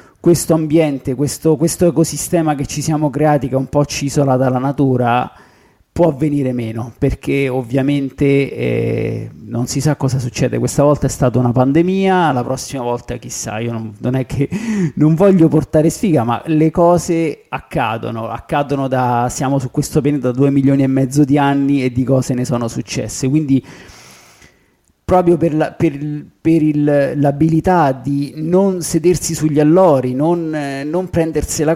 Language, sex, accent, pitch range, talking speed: Italian, male, native, 130-160 Hz, 165 wpm